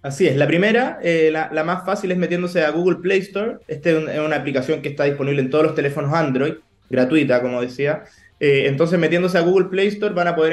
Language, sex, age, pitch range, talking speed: Spanish, male, 20-39, 140-175 Hz, 240 wpm